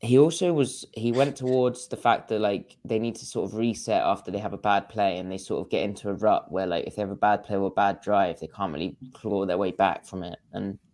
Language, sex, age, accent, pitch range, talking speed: English, male, 20-39, British, 95-110 Hz, 285 wpm